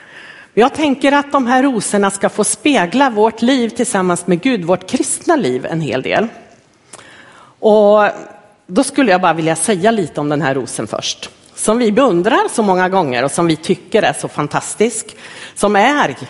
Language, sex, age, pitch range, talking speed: Swedish, female, 50-69, 165-235 Hz, 175 wpm